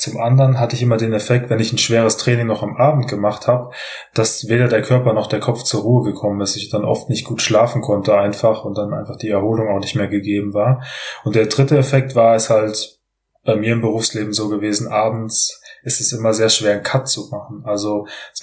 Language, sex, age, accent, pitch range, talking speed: German, male, 20-39, German, 105-125 Hz, 230 wpm